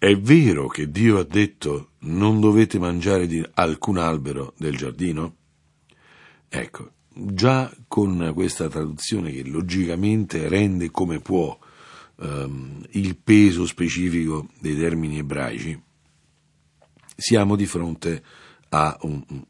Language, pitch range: Italian, 80-115 Hz